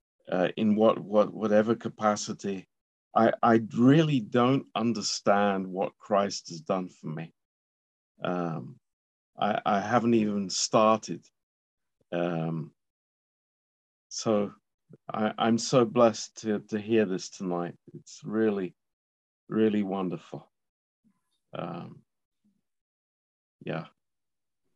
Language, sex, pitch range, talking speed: Romanian, male, 90-110 Hz, 95 wpm